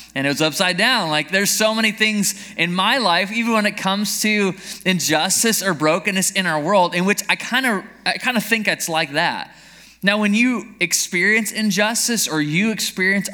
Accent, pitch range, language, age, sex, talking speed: American, 155-200 Hz, English, 20-39, male, 200 wpm